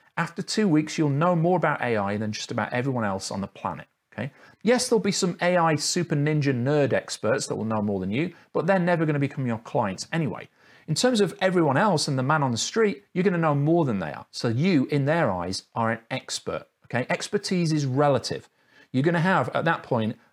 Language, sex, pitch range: English, male, 120-170 Hz